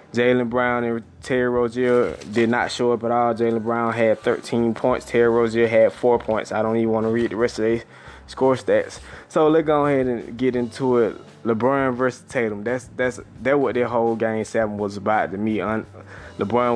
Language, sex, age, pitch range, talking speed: English, male, 20-39, 110-120 Hz, 210 wpm